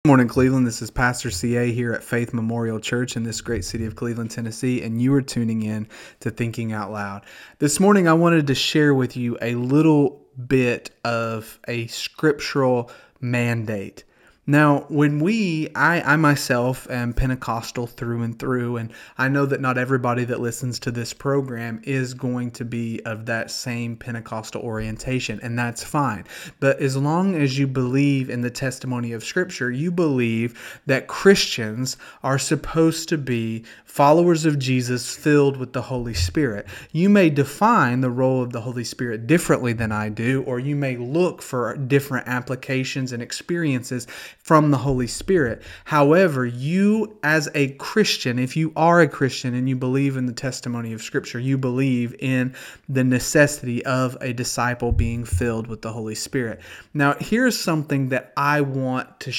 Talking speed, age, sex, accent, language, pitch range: 170 wpm, 30-49, male, American, English, 120-145 Hz